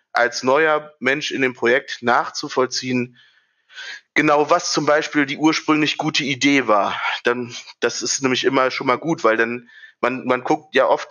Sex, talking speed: male, 170 wpm